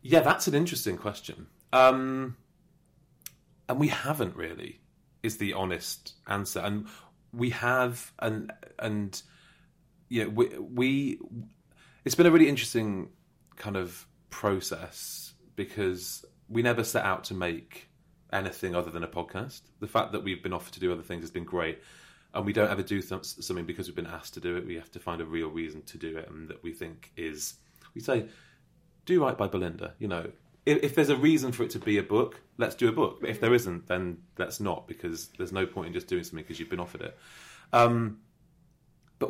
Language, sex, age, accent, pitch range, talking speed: English, male, 30-49, British, 90-120 Hz, 195 wpm